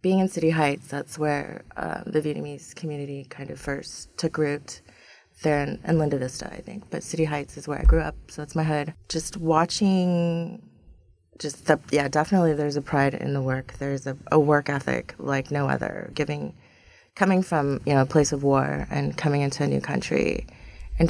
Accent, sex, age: American, female, 30-49